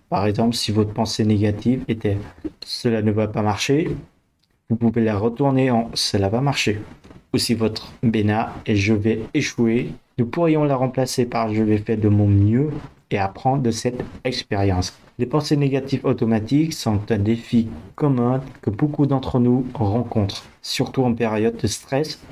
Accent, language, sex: French, French, male